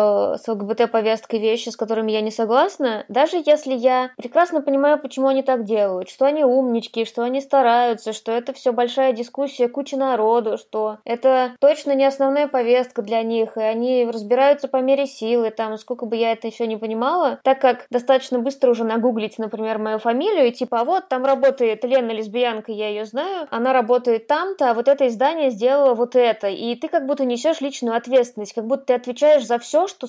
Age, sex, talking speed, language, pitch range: 20-39, female, 195 wpm, Russian, 230-275 Hz